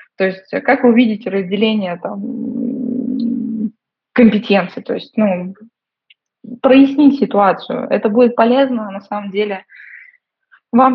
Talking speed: 105 wpm